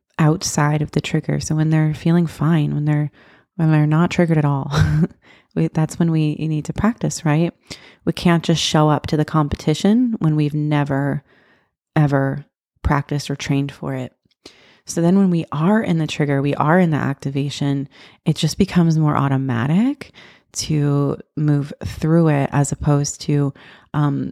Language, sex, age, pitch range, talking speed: English, female, 30-49, 145-160 Hz, 170 wpm